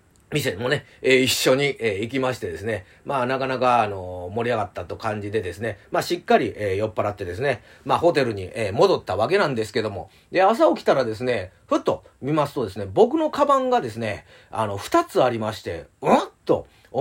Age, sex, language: 40-59, male, Japanese